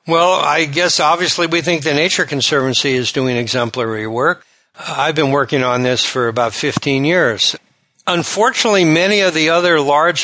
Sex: male